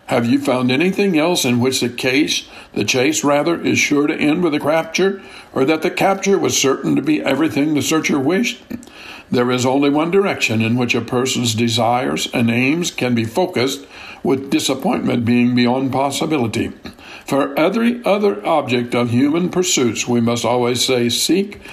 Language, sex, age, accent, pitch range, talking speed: English, male, 60-79, American, 120-170 Hz, 175 wpm